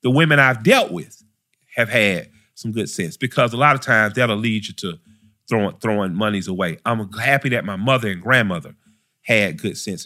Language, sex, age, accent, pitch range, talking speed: English, male, 40-59, American, 105-140 Hz, 195 wpm